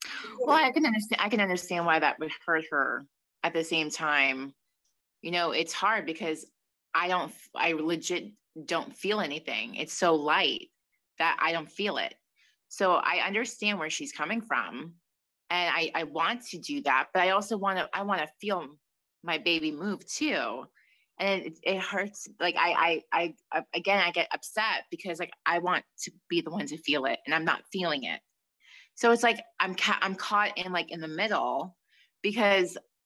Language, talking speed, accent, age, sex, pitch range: English, 190 wpm, American, 20-39, female, 160-205 Hz